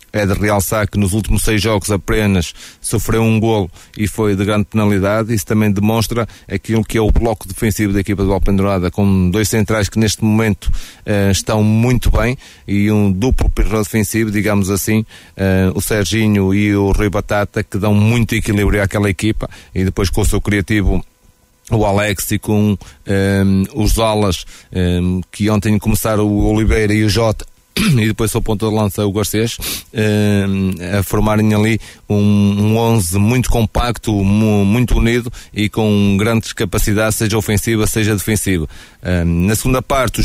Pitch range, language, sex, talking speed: 100-110 Hz, Portuguese, male, 165 wpm